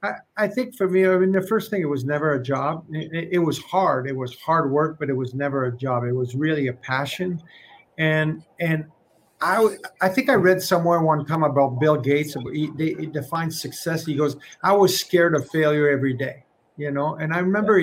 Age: 50-69